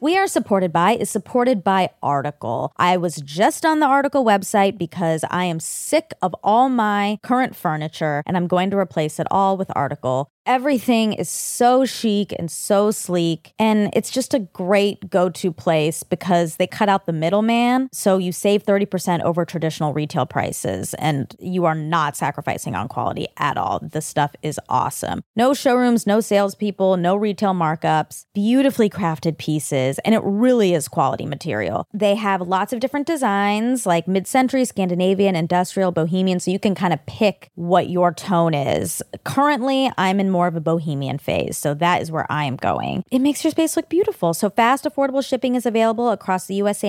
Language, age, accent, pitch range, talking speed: English, 20-39, American, 170-240 Hz, 180 wpm